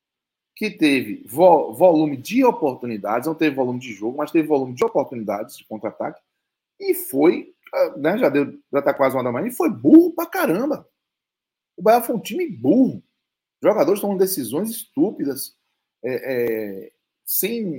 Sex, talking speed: male, 160 wpm